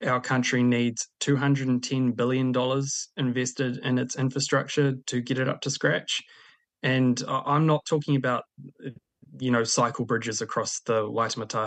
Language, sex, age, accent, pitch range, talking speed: English, male, 20-39, Australian, 110-130 Hz, 140 wpm